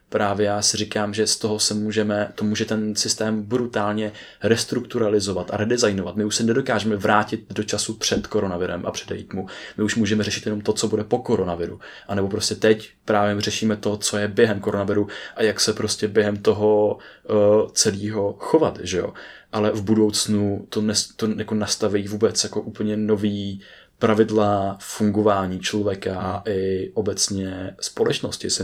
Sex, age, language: male, 20-39, Czech